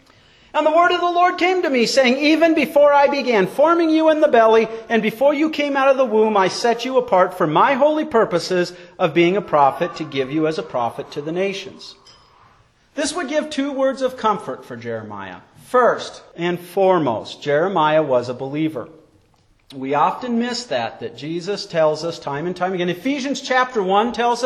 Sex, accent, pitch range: male, American, 175-270 Hz